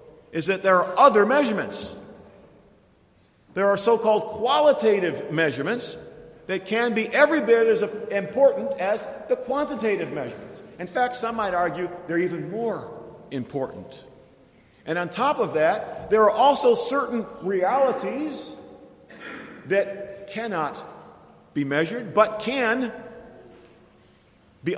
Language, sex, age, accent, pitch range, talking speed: English, male, 50-69, American, 160-230 Hz, 115 wpm